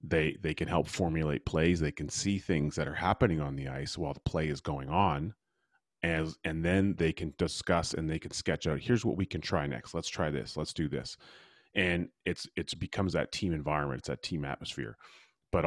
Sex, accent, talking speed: male, American, 220 wpm